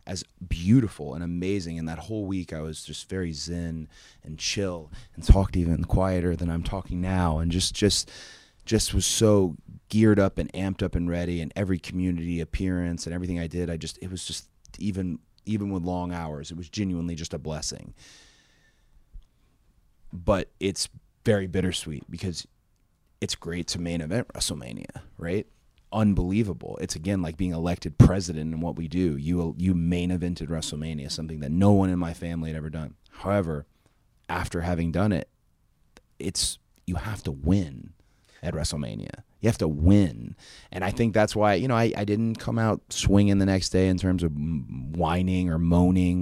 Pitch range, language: 80-95 Hz, English